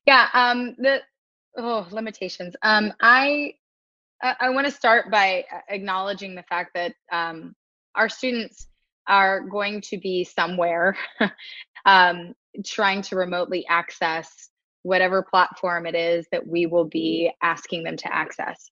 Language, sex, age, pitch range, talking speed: English, female, 20-39, 175-210 Hz, 135 wpm